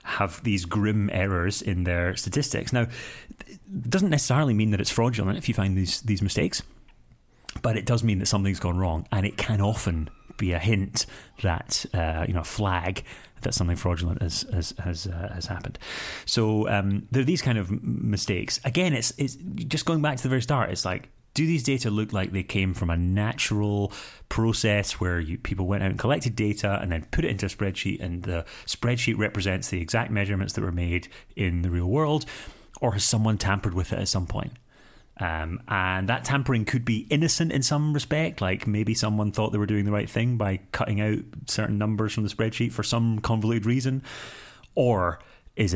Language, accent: English, British